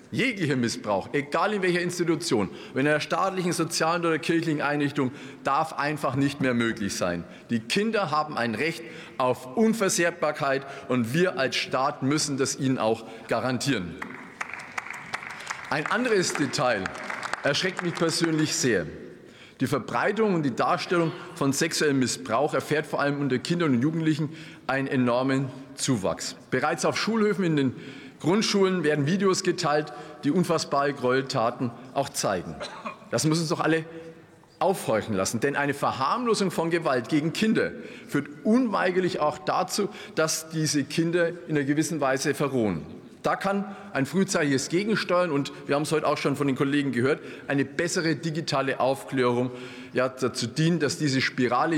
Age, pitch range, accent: 40-59, 135-170 Hz, German